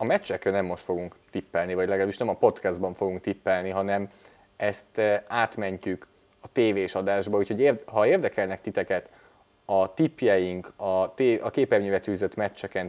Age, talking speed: 30-49, 145 wpm